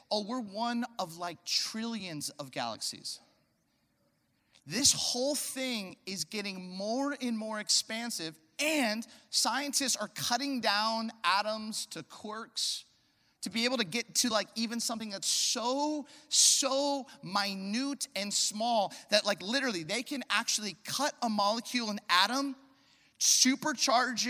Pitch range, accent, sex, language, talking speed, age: 195-255 Hz, American, male, English, 130 wpm, 30-49